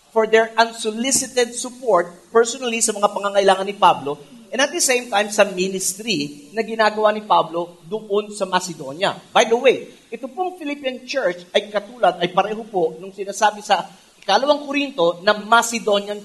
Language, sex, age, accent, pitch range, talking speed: English, male, 40-59, Filipino, 195-270 Hz, 160 wpm